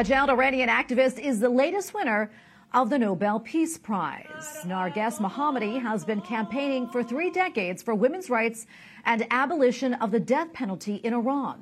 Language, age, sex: English, 40-59, female